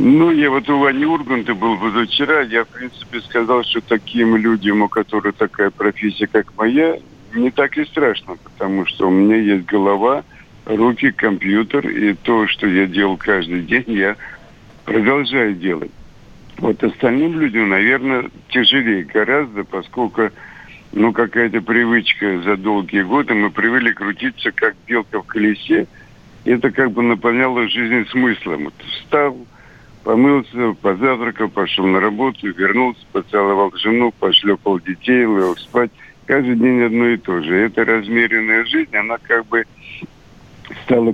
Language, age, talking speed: Russian, 60-79, 135 wpm